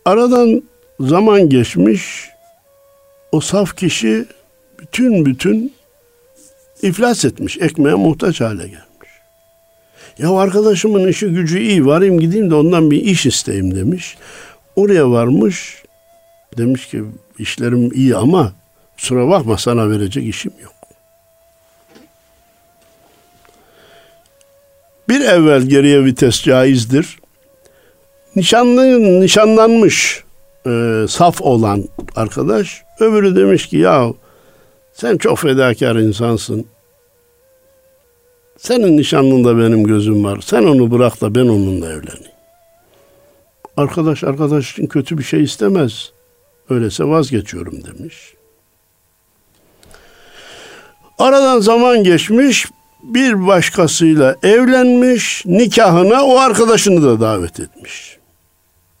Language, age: Turkish, 60-79